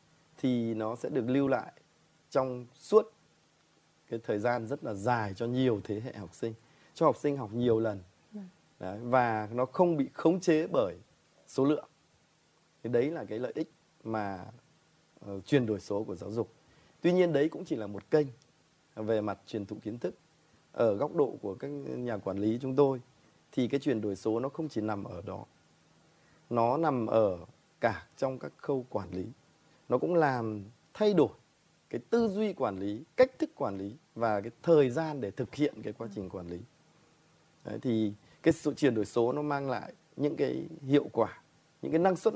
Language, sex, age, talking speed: Vietnamese, male, 20-39, 195 wpm